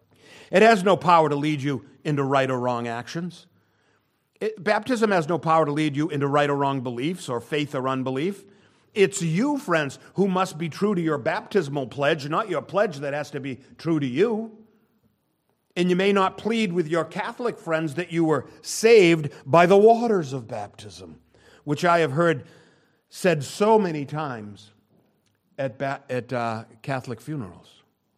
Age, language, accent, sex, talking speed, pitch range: 50-69, English, American, male, 175 wpm, 115-165 Hz